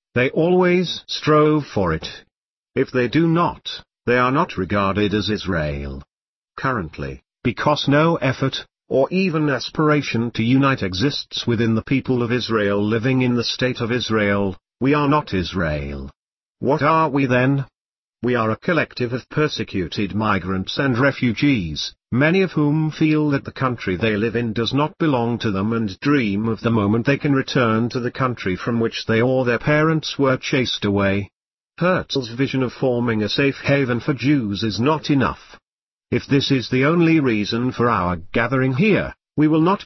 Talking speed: 170 wpm